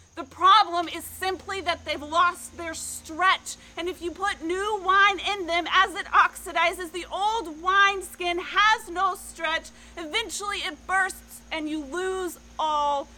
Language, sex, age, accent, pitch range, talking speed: English, female, 30-49, American, 280-360 Hz, 150 wpm